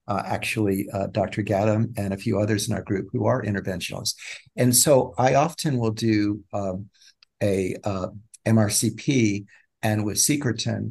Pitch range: 105-120 Hz